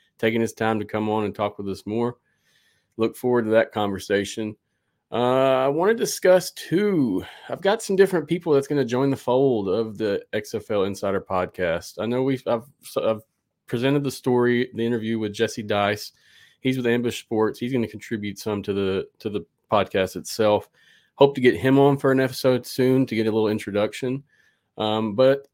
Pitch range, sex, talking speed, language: 110-130 Hz, male, 195 wpm, English